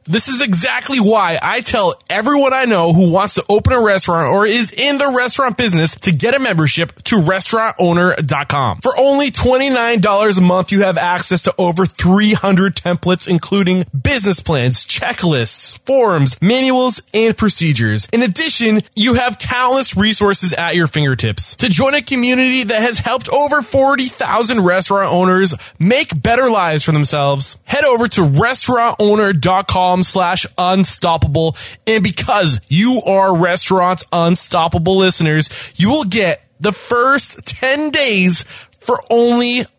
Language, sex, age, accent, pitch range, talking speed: English, male, 20-39, American, 145-215 Hz, 140 wpm